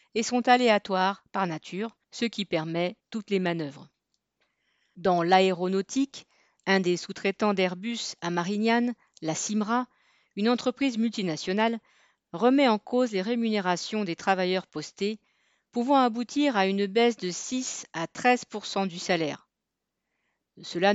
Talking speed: 125 wpm